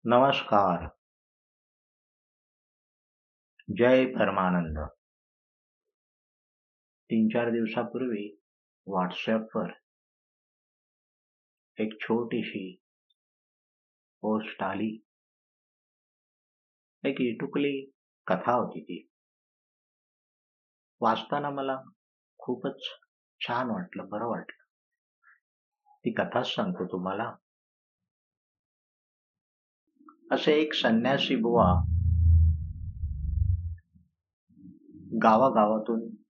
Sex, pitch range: male, 90-120 Hz